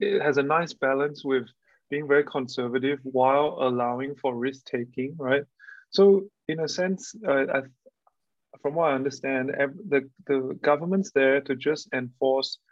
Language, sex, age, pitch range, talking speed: English, male, 30-49, 130-150 Hz, 145 wpm